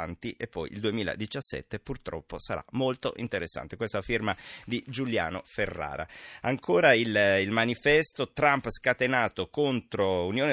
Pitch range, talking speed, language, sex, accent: 90-120 Hz, 120 wpm, Italian, male, native